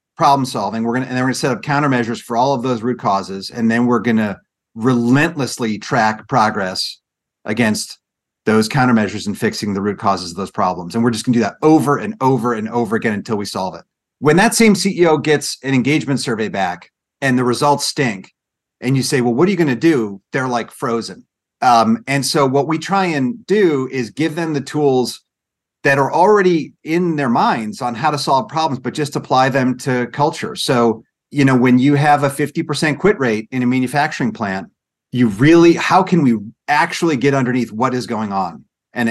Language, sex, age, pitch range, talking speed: English, male, 40-59, 115-150 Hz, 210 wpm